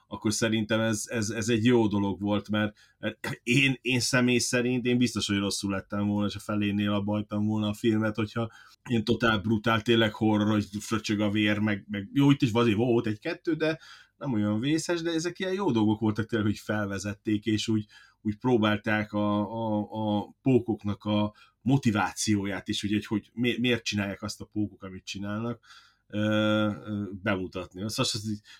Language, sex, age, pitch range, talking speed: Hungarian, male, 30-49, 105-120 Hz, 170 wpm